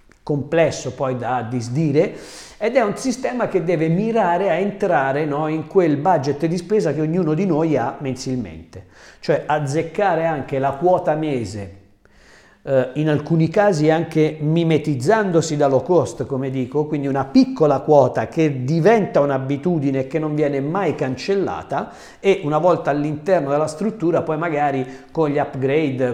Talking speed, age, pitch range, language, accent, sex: 145 wpm, 50-69, 135-170 Hz, Italian, native, male